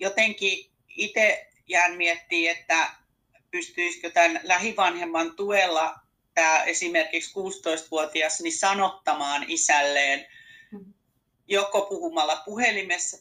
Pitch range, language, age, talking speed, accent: 150-205 Hz, Finnish, 40-59, 80 wpm, native